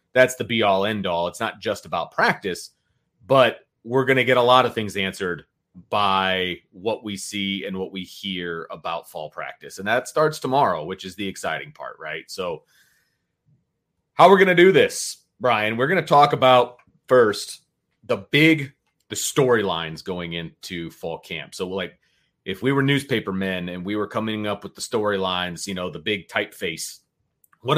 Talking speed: 185 wpm